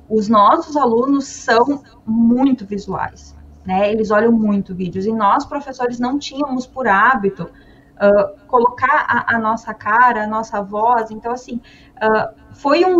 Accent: Brazilian